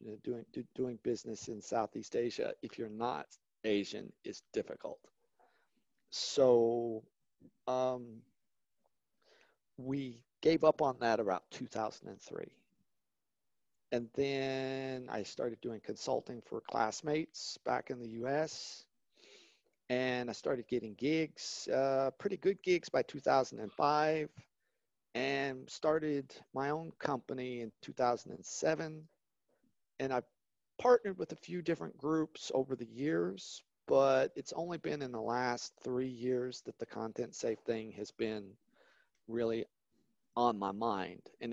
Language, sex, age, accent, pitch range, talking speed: English, male, 40-59, American, 115-140 Hz, 120 wpm